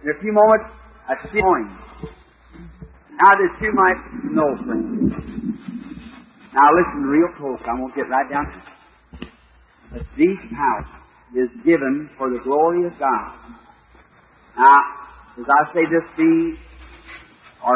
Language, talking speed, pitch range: English, 140 wpm, 140-215 Hz